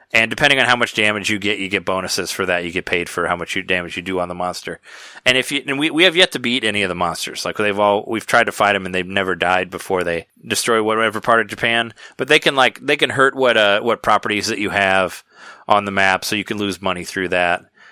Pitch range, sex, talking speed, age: 90-115 Hz, male, 275 wpm, 30-49